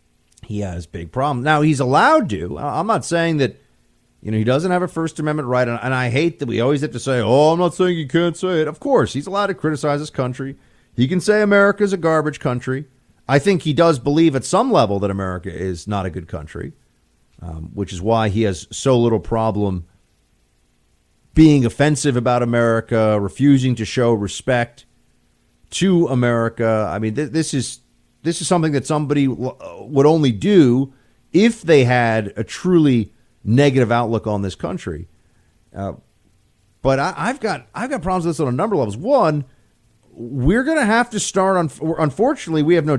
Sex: male